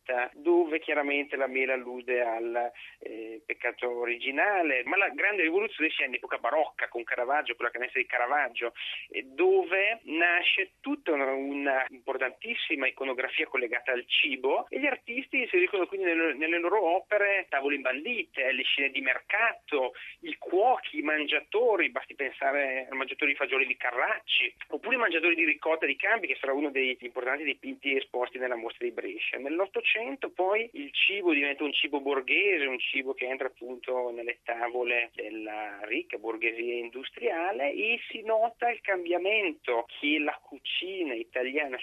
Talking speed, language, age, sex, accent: 160 wpm, Italian, 30-49, male, native